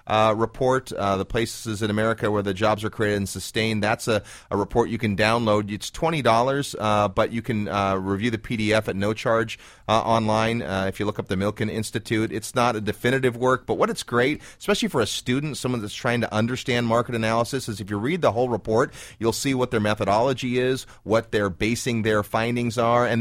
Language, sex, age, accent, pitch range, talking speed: English, male, 30-49, American, 105-120 Hz, 215 wpm